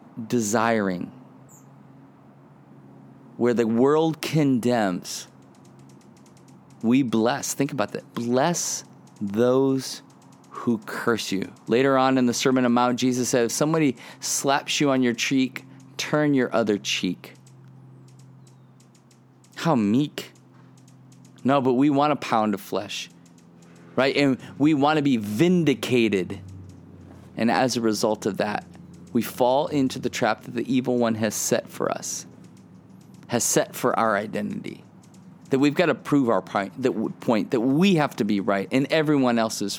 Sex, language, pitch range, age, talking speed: male, English, 105-140 Hz, 30-49, 140 wpm